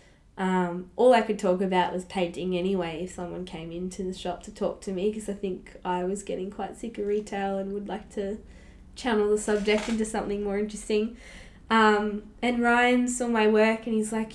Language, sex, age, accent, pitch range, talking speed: English, female, 10-29, Australian, 185-210 Hz, 205 wpm